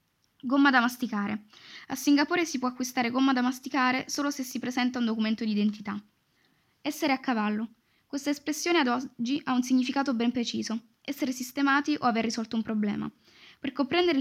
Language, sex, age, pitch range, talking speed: Italian, female, 10-29, 220-270 Hz, 170 wpm